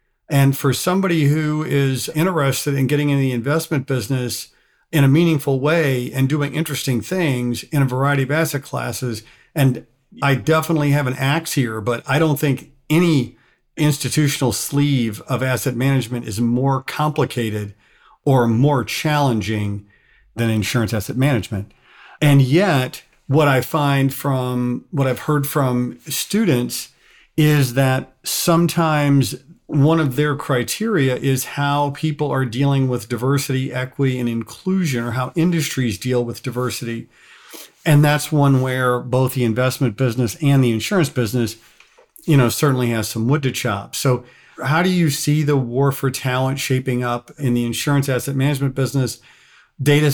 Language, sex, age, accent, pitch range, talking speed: English, male, 50-69, American, 125-150 Hz, 150 wpm